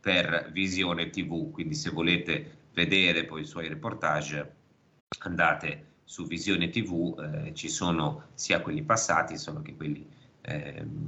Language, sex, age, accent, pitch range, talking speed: Italian, male, 30-49, native, 80-100 Hz, 135 wpm